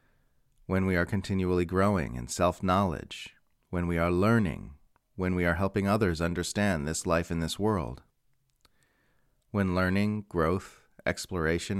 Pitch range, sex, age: 85-105 Hz, male, 30-49